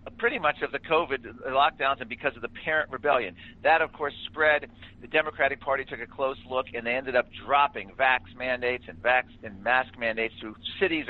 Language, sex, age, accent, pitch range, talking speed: English, male, 50-69, American, 115-150 Hz, 200 wpm